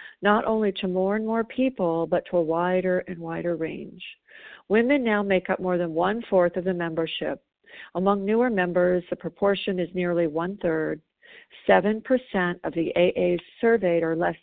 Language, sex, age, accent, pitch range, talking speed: English, female, 50-69, American, 175-215 Hz, 175 wpm